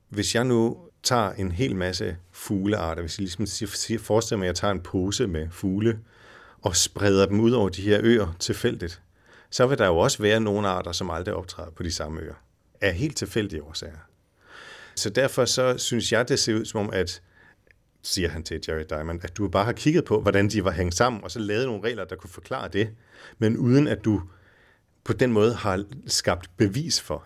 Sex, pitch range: male, 90-115 Hz